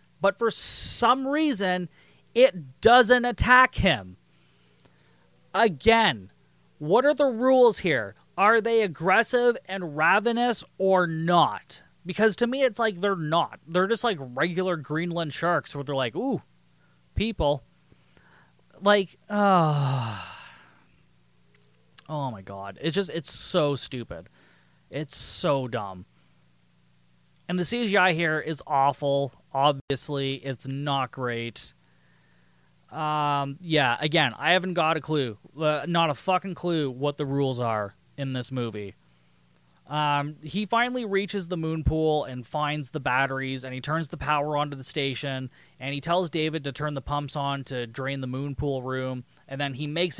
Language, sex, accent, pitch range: English, male, American, 130-180 Hz